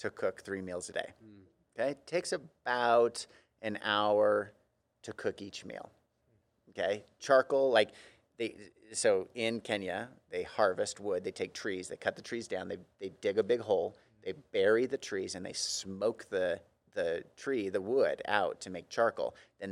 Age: 30-49